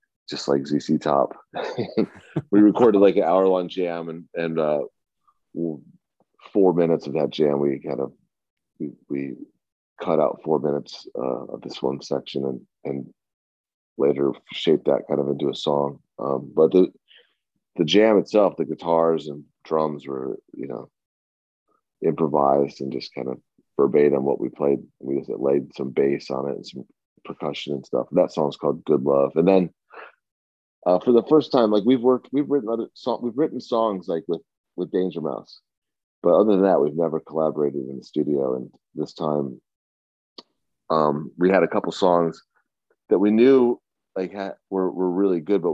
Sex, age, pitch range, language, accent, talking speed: male, 30-49, 70-95 Hz, English, American, 175 wpm